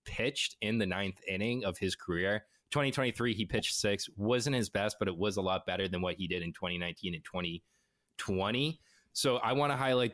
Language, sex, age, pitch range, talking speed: English, male, 20-39, 90-115 Hz, 200 wpm